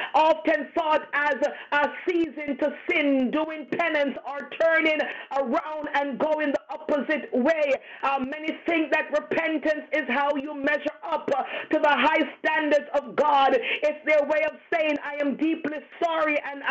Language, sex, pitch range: English, female, 290-315 Hz